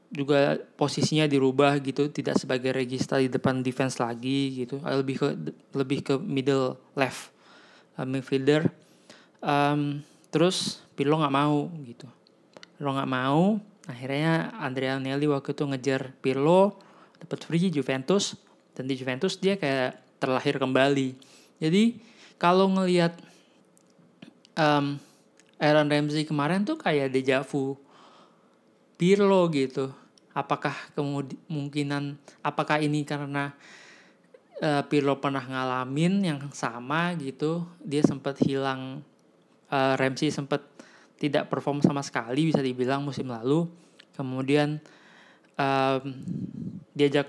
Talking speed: 110 wpm